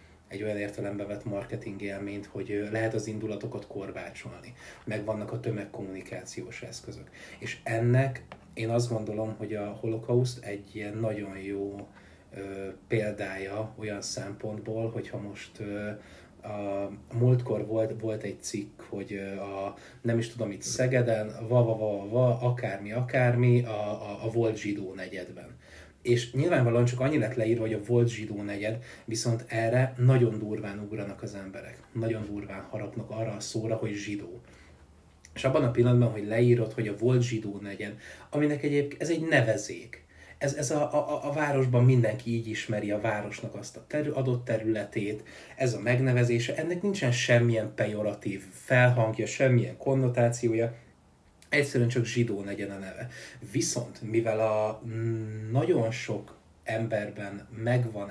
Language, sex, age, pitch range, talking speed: Hungarian, male, 30-49, 100-120 Hz, 140 wpm